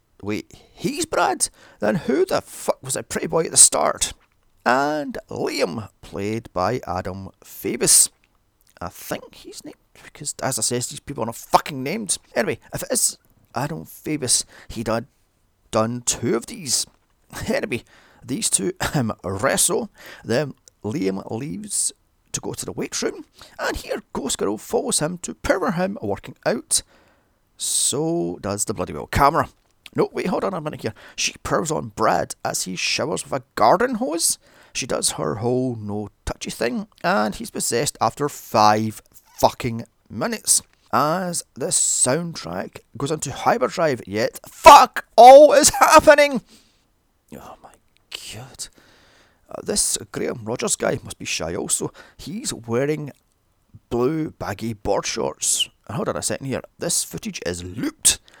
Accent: British